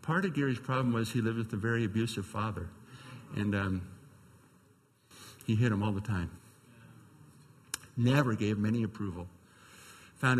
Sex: male